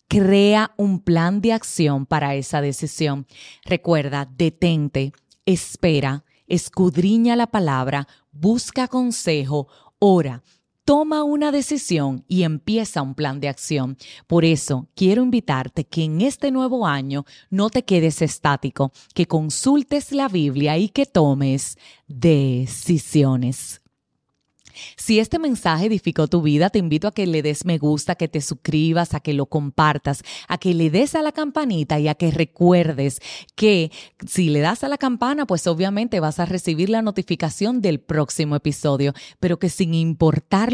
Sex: female